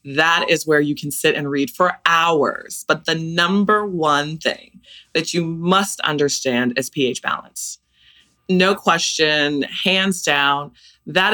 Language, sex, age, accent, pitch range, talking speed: English, female, 30-49, American, 135-175 Hz, 145 wpm